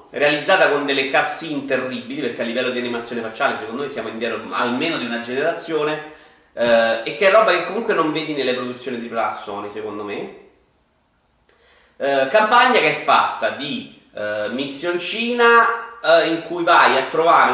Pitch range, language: 135-180 Hz, Italian